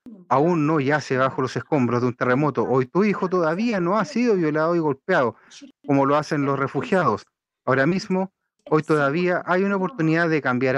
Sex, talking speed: male, 185 wpm